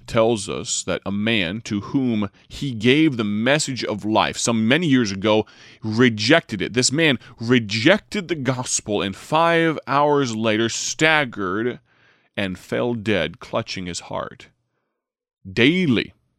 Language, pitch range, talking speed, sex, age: English, 100-130 Hz, 130 wpm, male, 30-49